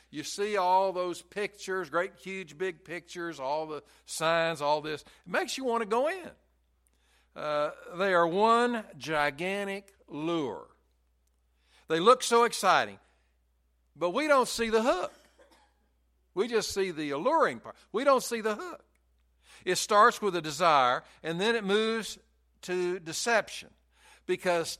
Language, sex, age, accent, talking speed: English, male, 60-79, American, 145 wpm